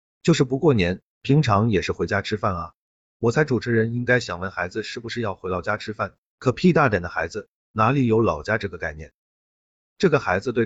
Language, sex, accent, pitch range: Chinese, male, native, 95-130 Hz